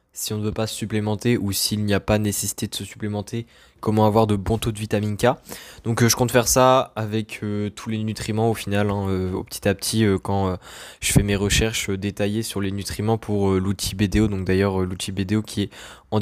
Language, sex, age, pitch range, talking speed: French, male, 20-39, 100-115 Hz, 245 wpm